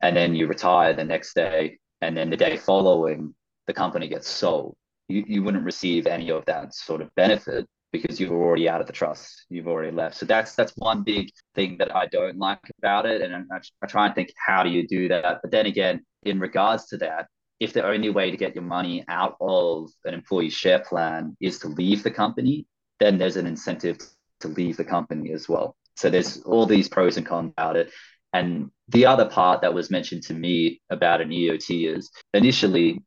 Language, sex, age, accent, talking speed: English, male, 20-39, Australian, 215 wpm